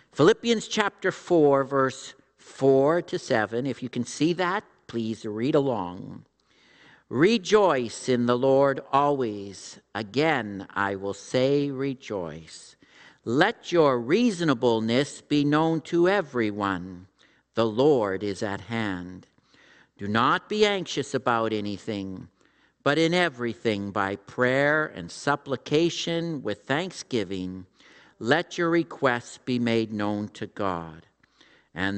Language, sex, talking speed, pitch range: English, male, 115 wpm, 105-165 Hz